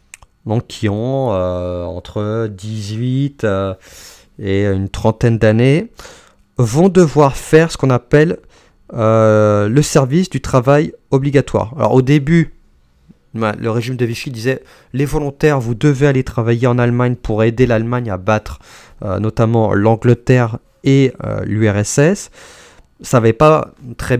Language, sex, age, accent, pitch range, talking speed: French, male, 30-49, French, 105-135 Hz, 135 wpm